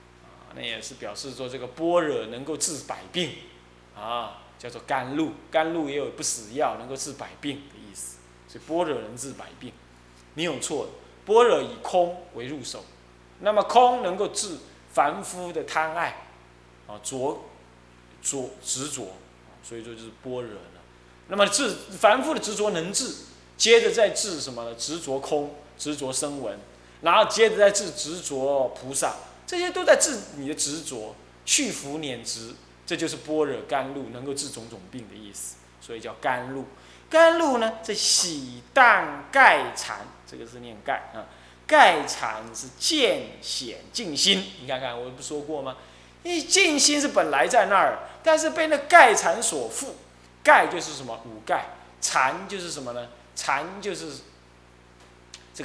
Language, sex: Chinese, male